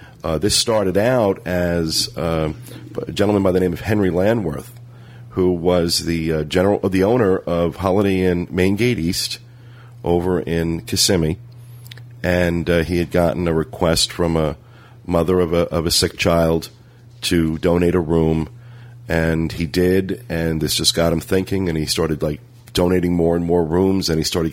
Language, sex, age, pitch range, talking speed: English, male, 40-59, 85-110 Hz, 175 wpm